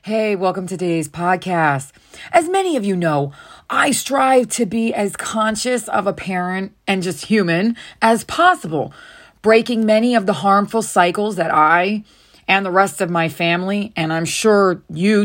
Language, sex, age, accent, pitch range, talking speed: English, female, 30-49, American, 180-240 Hz, 165 wpm